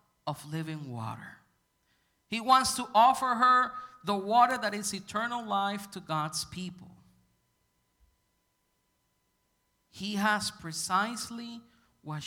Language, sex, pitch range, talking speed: English, male, 130-200 Hz, 105 wpm